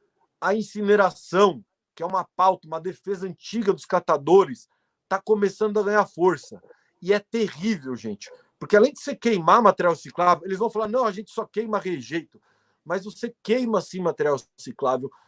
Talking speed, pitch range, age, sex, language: 165 wpm, 180-220 Hz, 50-69, male, Portuguese